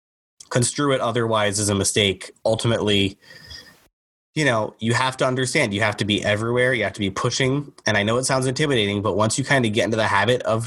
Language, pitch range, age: English, 105-130 Hz, 20-39